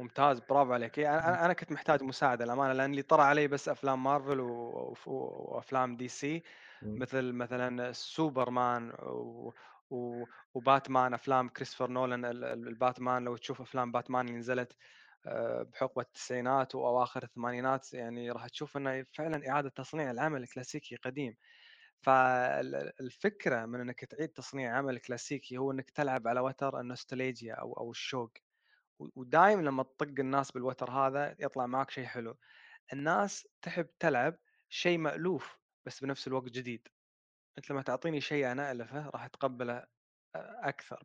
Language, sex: Arabic, male